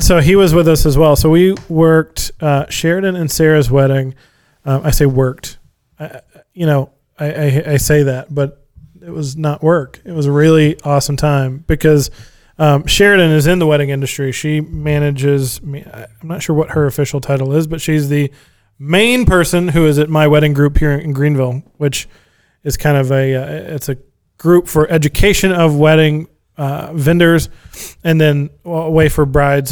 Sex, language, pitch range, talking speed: male, English, 140-165 Hz, 190 wpm